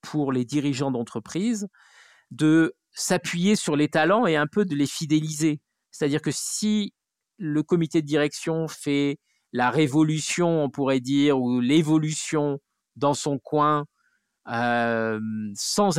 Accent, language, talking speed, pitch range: French, French, 130 wpm, 130-160 Hz